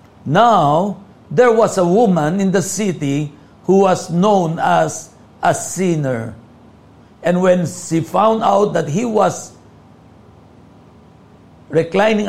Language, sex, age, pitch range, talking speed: Filipino, male, 50-69, 165-210 Hz, 110 wpm